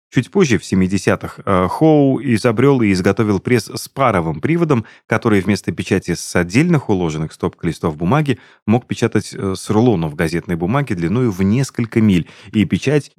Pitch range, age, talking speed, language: 95-135 Hz, 30-49, 150 wpm, Russian